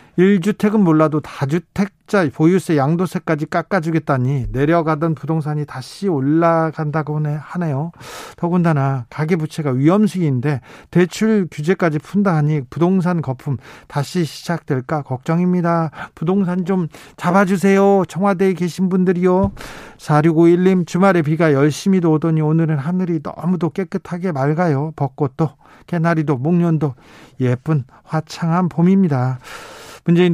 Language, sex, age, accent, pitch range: Korean, male, 40-59, native, 150-180 Hz